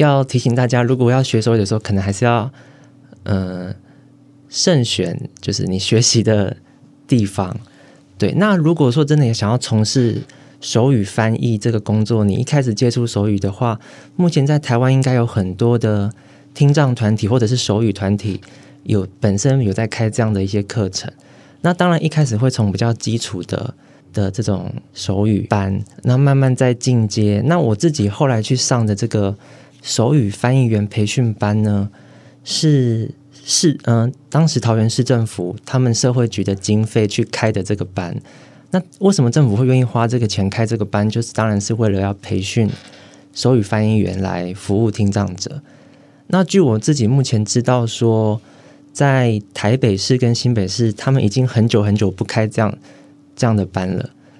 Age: 20-39